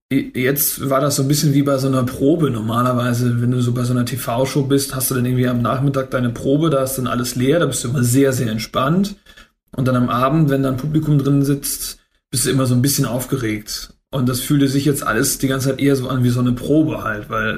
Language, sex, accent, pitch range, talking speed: German, male, German, 125-145 Hz, 255 wpm